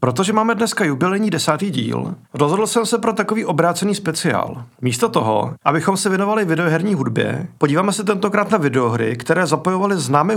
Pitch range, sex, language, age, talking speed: 150-200 Hz, male, Czech, 40-59, 160 wpm